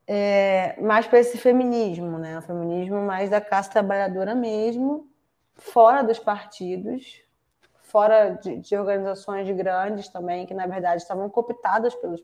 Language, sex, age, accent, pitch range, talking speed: Portuguese, female, 20-39, Brazilian, 185-230 Hz, 135 wpm